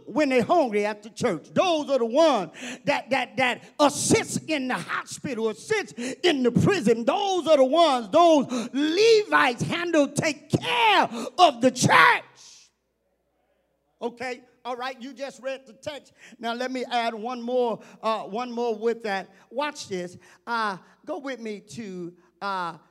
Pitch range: 160-250 Hz